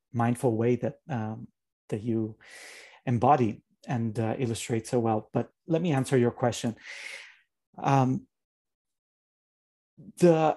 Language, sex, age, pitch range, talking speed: English, male, 30-49, 115-140 Hz, 115 wpm